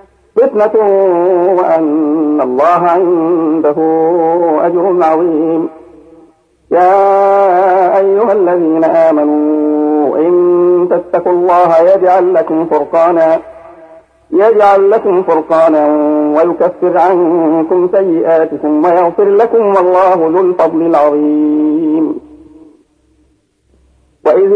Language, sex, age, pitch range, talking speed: Arabic, male, 50-69, 160-200 Hz, 70 wpm